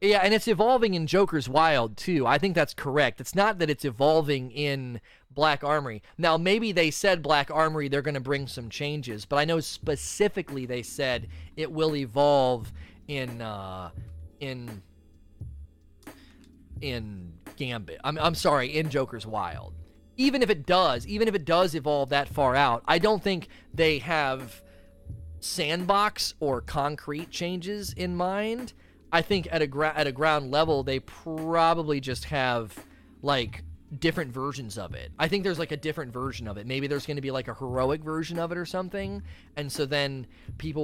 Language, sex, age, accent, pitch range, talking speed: English, male, 30-49, American, 110-155 Hz, 175 wpm